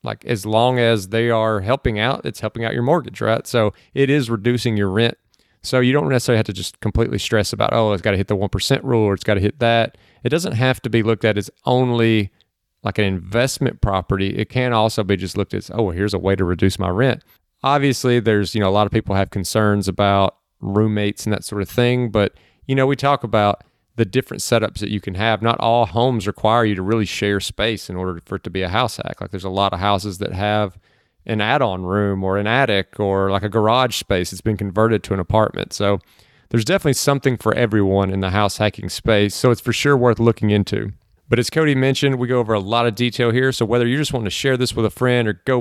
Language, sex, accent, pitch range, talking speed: English, male, American, 100-120 Hz, 250 wpm